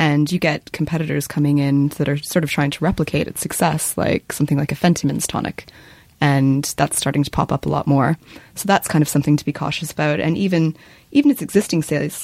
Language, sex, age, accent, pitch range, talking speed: English, female, 20-39, American, 145-160 Hz, 220 wpm